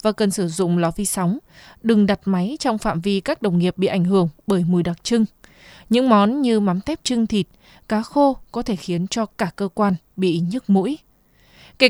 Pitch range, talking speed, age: 190-240 Hz, 215 wpm, 20-39